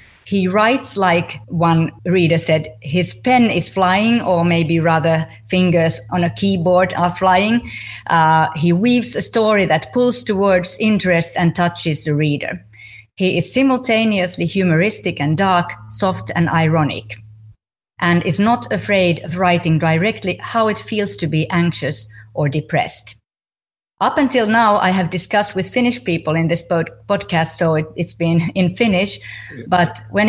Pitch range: 160-195 Hz